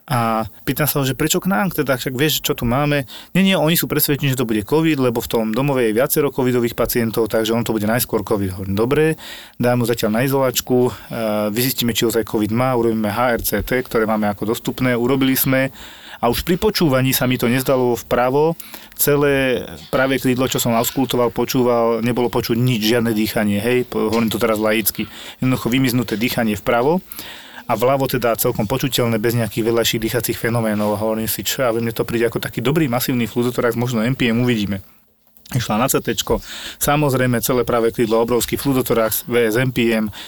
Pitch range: 115-135 Hz